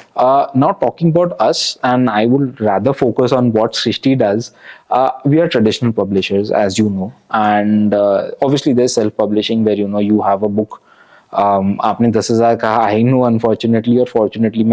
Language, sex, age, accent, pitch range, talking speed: Hindi, male, 20-39, native, 110-135 Hz, 180 wpm